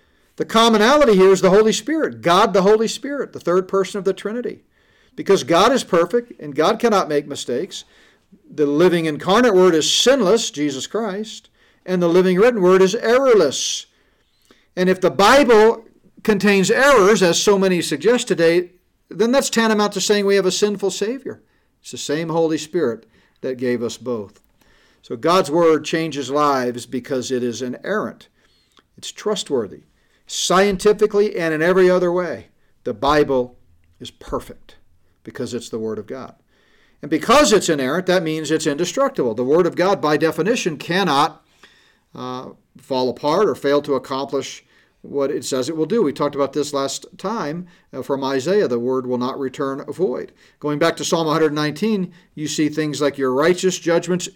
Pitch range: 145-205 Hz